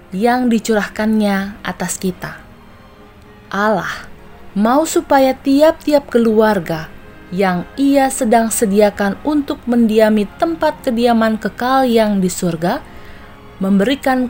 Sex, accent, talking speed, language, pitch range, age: female, native, 90 wpm, Indonesian, 195-260 Hz, 20-39